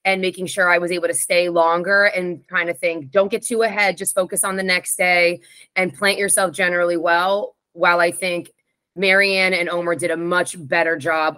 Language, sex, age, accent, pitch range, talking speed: English, female, 20-39, American, 175-215 Hz, 205 wpm